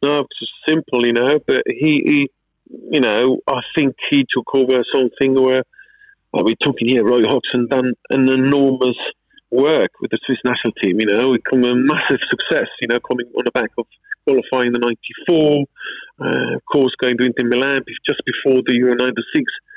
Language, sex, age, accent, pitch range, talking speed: English, male, 30-49, British, 125-210 Hz, 185 wpm